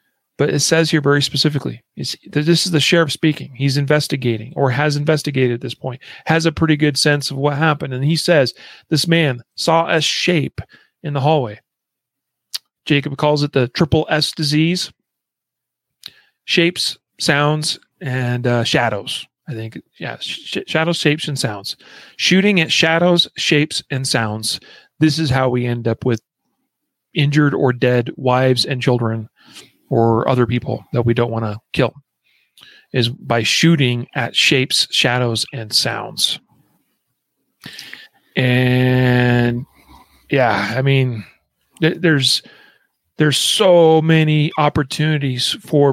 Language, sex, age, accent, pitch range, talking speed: English, male, 40-59, American, 125-155 Hz, 135 wpm